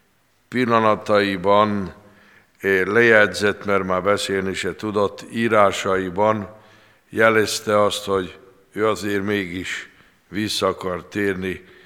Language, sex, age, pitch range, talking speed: Hungarian, male, 60-79, 95-105 Hz, 85 wpm